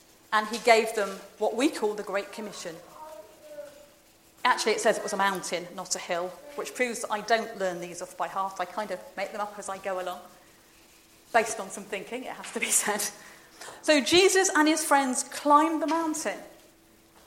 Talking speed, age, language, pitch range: 200 wpm, 40-59, English, 210-315 Hz